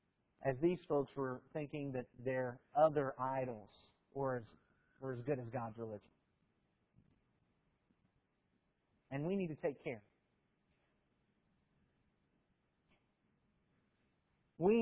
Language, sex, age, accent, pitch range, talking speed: English, male, 40-59, American, 130-185 Hz, 95 wpm